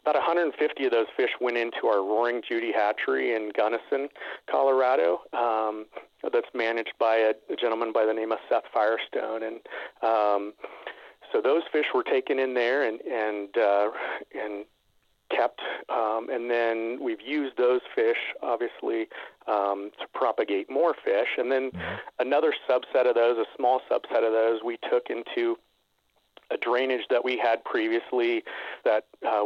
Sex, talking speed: male, 155 wpm